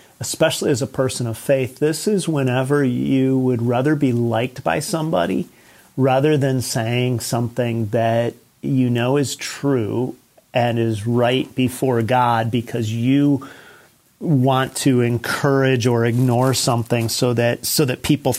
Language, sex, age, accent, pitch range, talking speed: English, male, 40-59, American, 115-135 Hz, 140 wpm